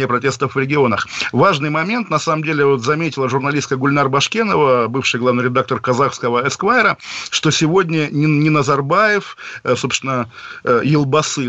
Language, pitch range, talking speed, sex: Russian, 125-150 Hz, 125 wpm, male